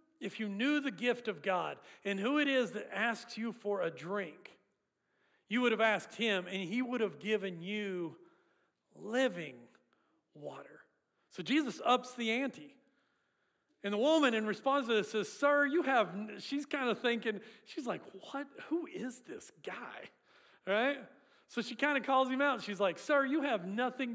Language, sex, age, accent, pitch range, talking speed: English, male, 40-59, American, 195-260 Hz, 175 wpm